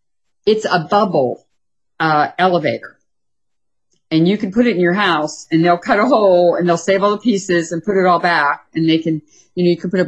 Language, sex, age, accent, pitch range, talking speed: English, female, 50-69, American, 165-195 Hz, 225 wpm